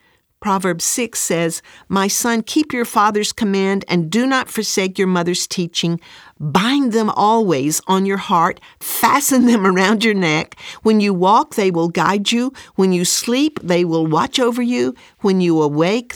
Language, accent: English, American